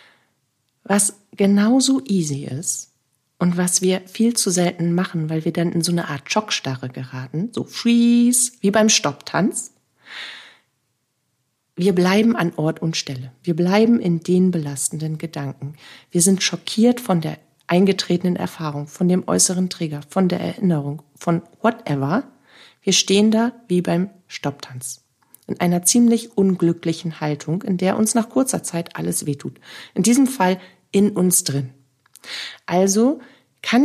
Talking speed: 140 wpm